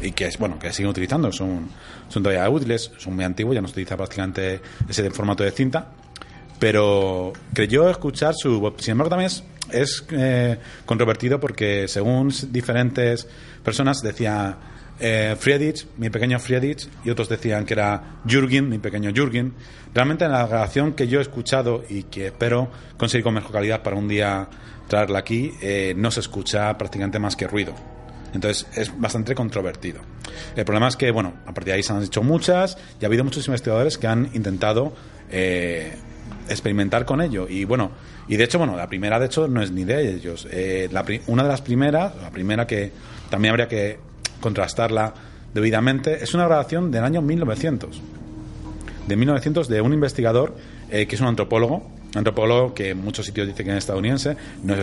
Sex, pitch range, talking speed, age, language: male, 100-130 Hz, 185 wpm, 30-49, Spanish